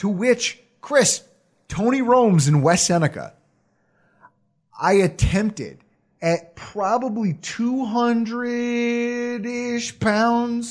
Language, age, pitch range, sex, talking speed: English, 30-49, 170-240 Hz, male, 80 wpm